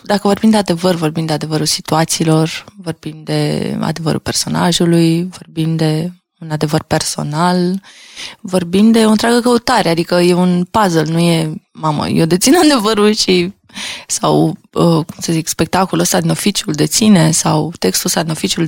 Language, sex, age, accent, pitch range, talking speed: Romanian, female, 20-39, native, 170-220 Hz, 155 wpm